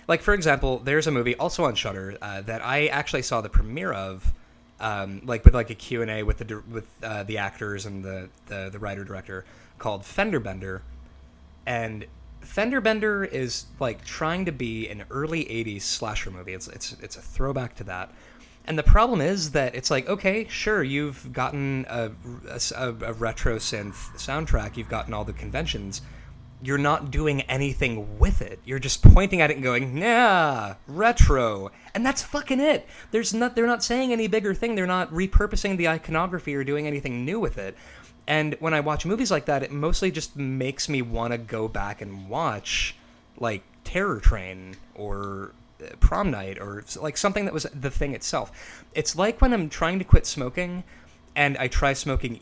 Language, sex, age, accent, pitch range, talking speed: English, male, 20-39, American, 105-160 Hz, 185 wpm